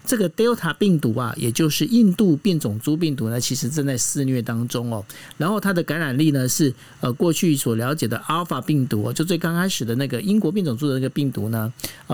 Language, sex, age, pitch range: Chinese, male, 50-69, 130-180 Hz